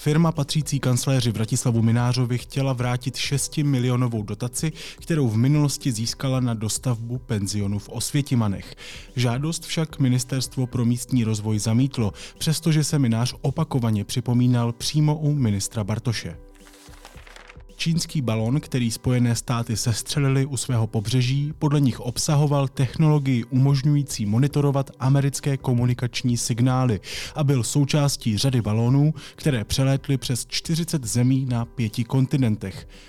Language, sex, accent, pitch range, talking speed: Czech, male, native, 110-135 Hz, 120 wpm